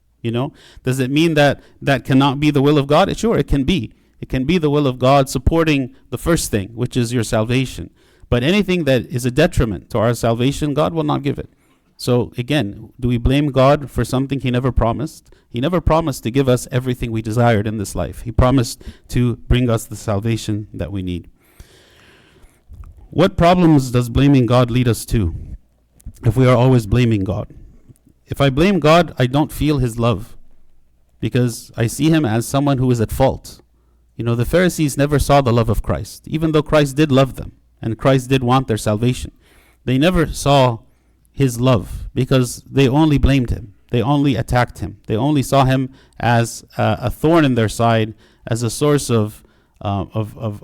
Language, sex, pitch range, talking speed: English, male, 110-140 Hz, 195 wpm